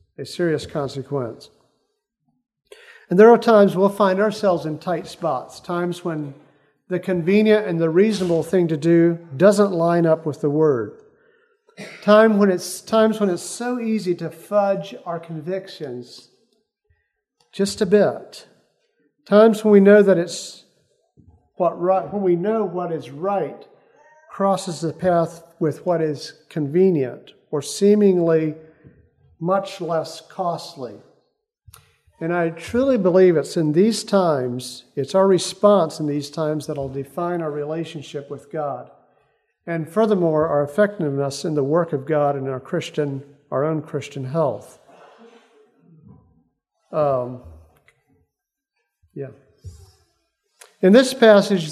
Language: English